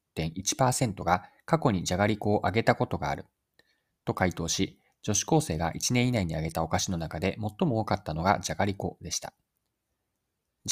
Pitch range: 90-135 Hz